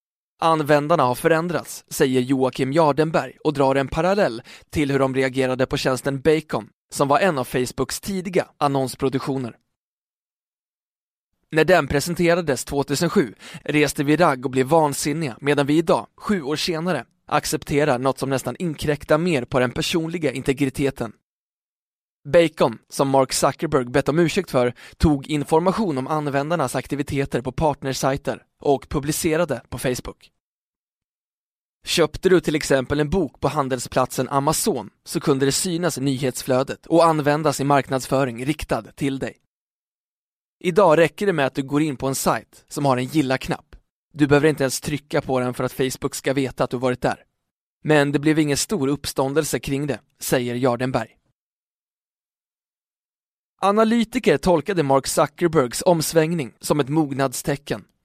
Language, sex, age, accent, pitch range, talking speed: Swedish, male, 20-39, native, 135-160 Hz, 145 wpm